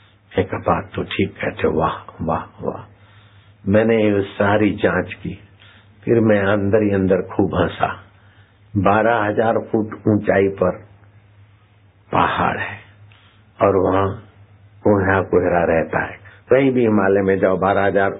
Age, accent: 60-79, native